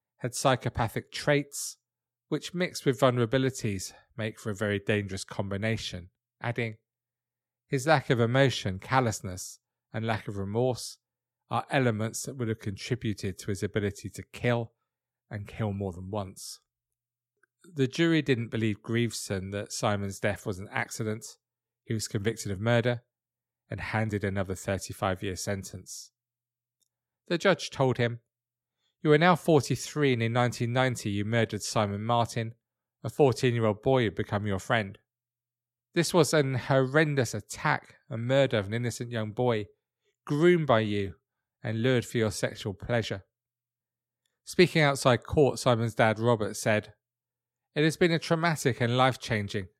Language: English